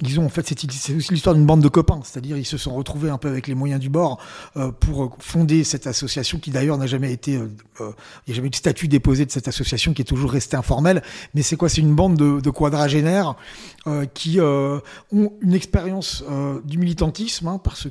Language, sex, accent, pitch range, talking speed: French, male, French, 130-165 Hz, 240 wpm